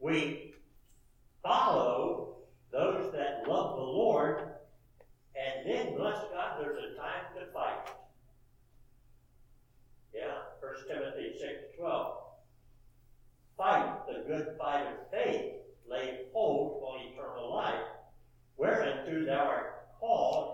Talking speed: 105 wpm